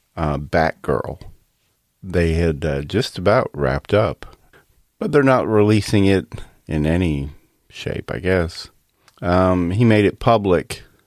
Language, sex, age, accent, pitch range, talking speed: English, male, 40-59, American, 75-100 Hz, 130 wpm